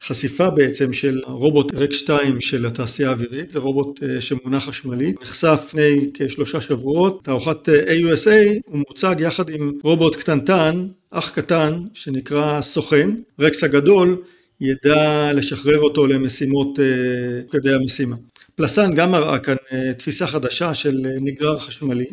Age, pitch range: 50-69, 130-155 Hz